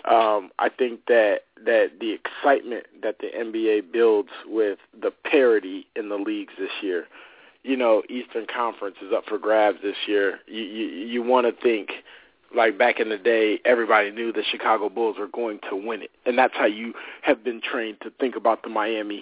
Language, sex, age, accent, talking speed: English, male, 40-59, American, 195 wpm